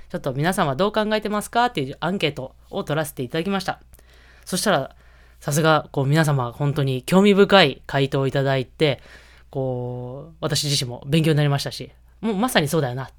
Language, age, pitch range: Japanese, 20-39, 130-195 Hz